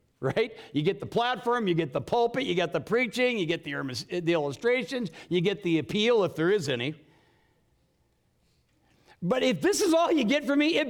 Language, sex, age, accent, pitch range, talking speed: English, male, 60-79, American, 165-250 Hz, 200 wpm